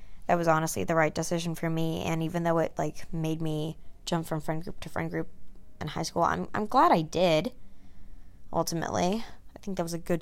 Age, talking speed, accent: 20-39, 210 wpm, American